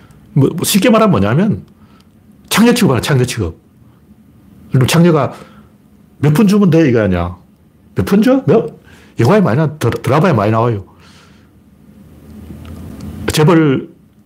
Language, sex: Korean, male